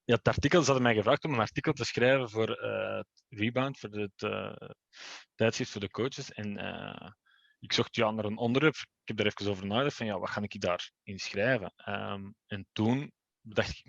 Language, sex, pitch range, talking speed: Dutch, male, 100-125 Hz, 220 wpm